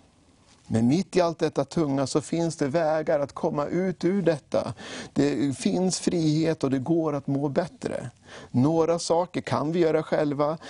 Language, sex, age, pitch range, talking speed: English, male, 50-69, 140-170 Hz, 170 wpm